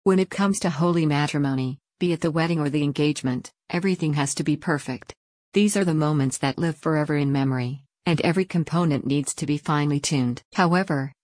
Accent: American